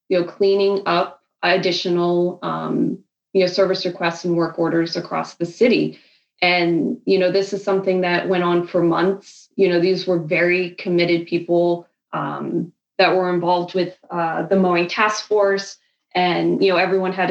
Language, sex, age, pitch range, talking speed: English, female, 20-39, 170-195 Hz, 170 wpm